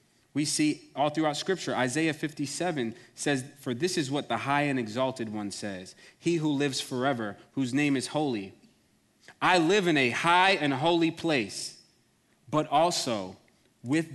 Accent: American